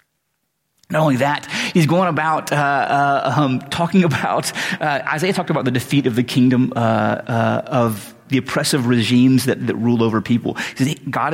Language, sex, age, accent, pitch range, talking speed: English, male, 30-49, American, 120-185 Hz, 185 wpm